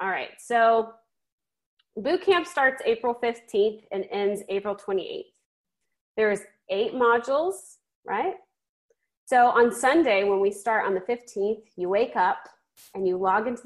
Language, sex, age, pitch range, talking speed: English, female, 30-49, 200-255 Hz, 135 wpm